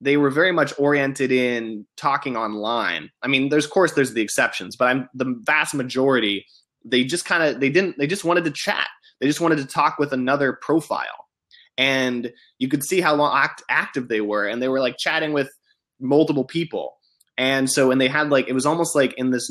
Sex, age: male, 20-39